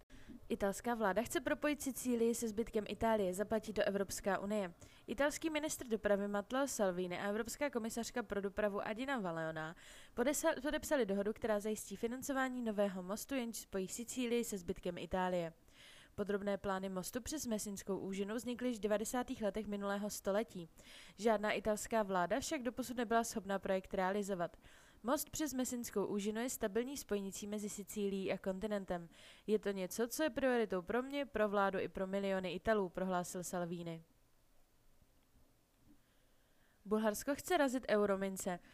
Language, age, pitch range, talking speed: Czech, 20-39, 195-240 Hz, 140 wpm